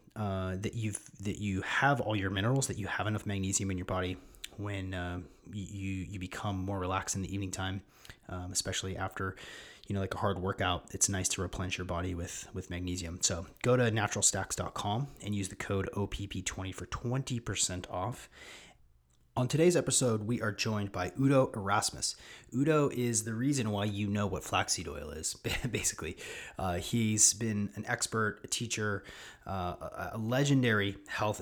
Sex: male